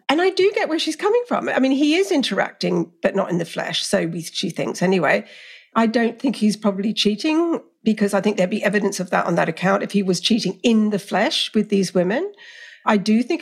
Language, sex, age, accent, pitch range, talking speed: English, female, 50-69, British, 195-290 Hz, 235 wpm